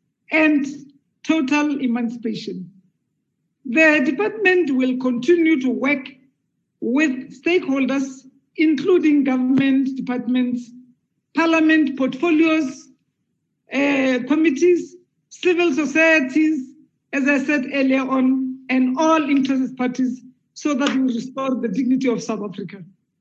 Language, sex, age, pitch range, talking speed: English, female, 50-69, 255-310 Hz, 100 wpm